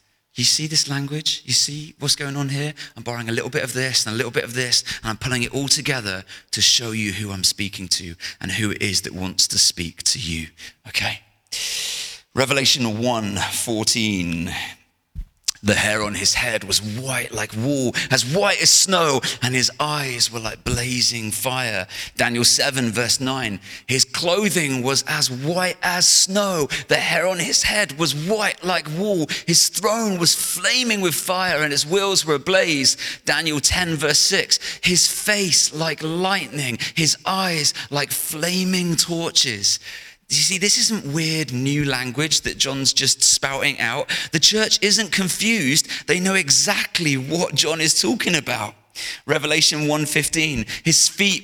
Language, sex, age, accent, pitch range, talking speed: English, male, 30-49, British, 120-170 Hz, 165 wpm